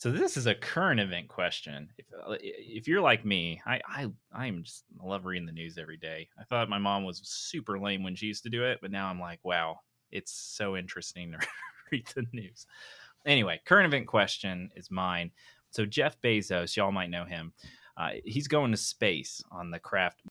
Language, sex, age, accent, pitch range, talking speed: English, male, 30-49, American, 90-120 Hz, 205 wpm